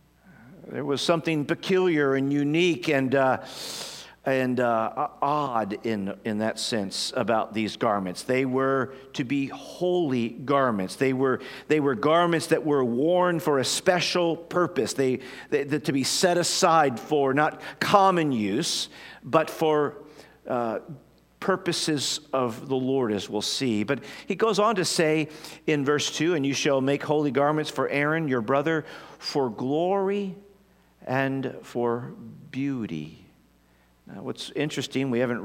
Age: 50-69